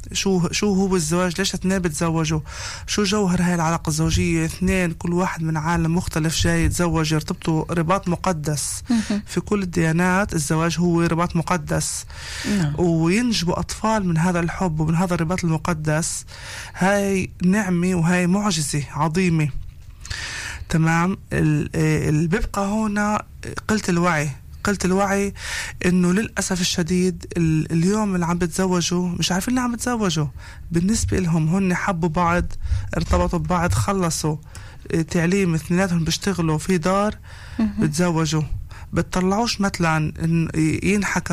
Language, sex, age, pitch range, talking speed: Hebrew, male, 20-39, 155-185 Hz, 115 wpm